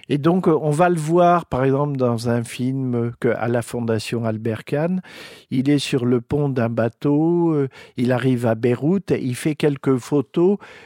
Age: 50-69